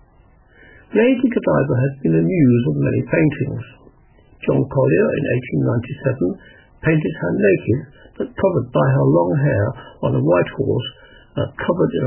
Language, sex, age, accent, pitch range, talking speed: English, male, 60-79, British, 120-145 Hz, 145 wpm